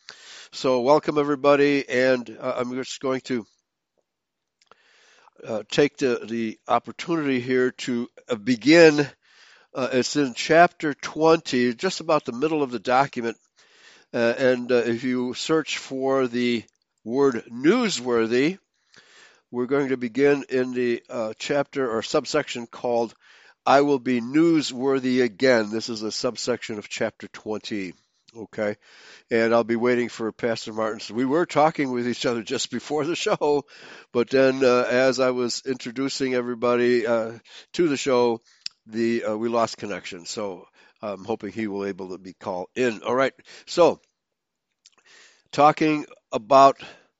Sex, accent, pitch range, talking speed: male, American, 120-140 Hz, 135 wpm